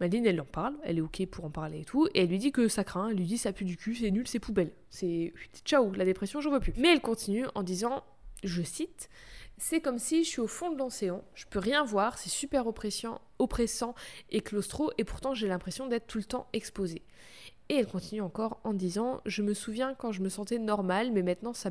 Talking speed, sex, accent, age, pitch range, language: 255 wpm, female, French, 20-39, 190-240 Hz, French